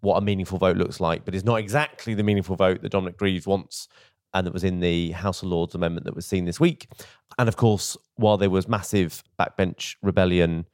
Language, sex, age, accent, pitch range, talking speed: English, male, 30-49, British, 95-115 Hz, 225 wpm